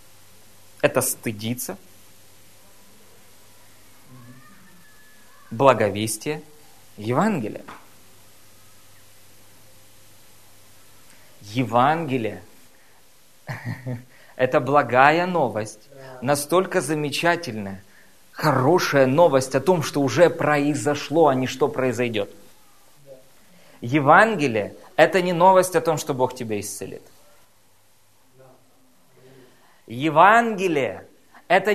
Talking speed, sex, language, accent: 60 wpm, male, Russian, native